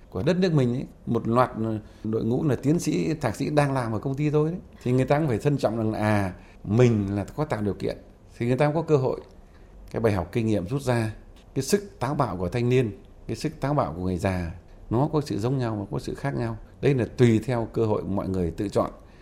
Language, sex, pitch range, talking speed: Vietnamese, male, 95-135 Hz, 270 wpm